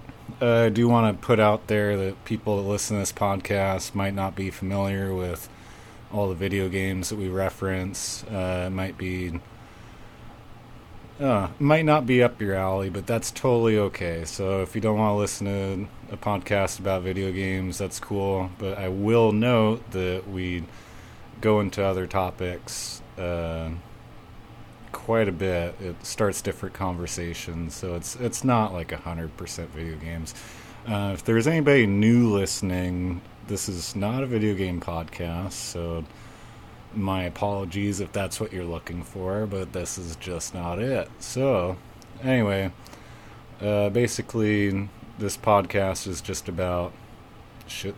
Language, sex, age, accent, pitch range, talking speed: English, male, 30-49, American, 90-115 Hz, 155 wpm